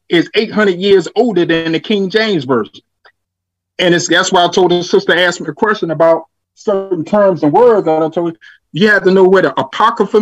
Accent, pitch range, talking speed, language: American, 160-210 Hz, 215 wpm, English